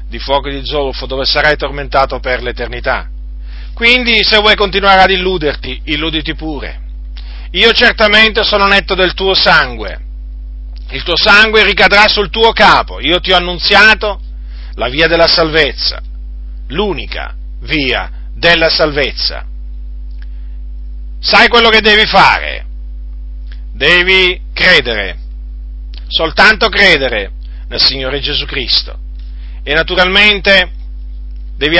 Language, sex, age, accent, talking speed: Italian, male, 40-59, native, 110 wpm